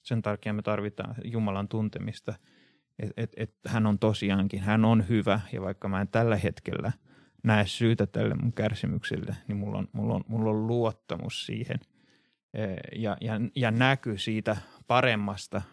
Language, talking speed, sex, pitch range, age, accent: Finnish, 160 wpm, male, 105-120 Hz, 30-49, native